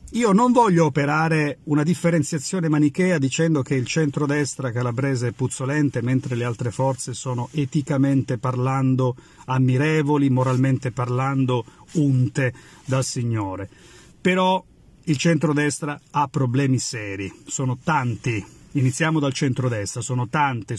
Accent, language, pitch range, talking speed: native, Italian, 130-165 Hz, 115 wpm